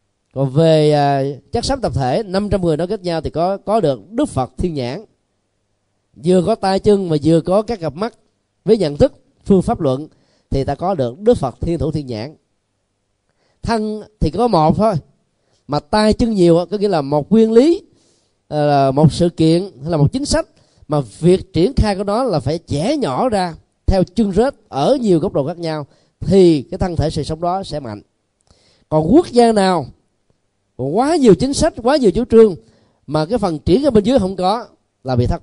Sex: male